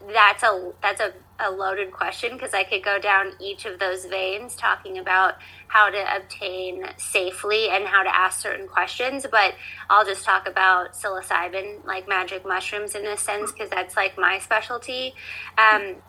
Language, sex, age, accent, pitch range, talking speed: English, female, 20-39, American, 190-220 Hz, 170 wpm